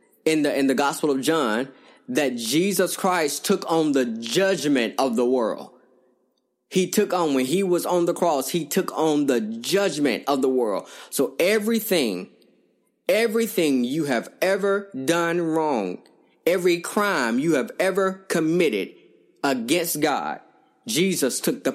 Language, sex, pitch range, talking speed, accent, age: English, male, 135-190 Hz, 145 wpm, American, 20-39